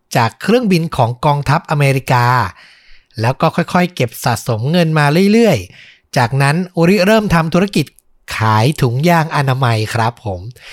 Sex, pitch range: male, 125-155 Hz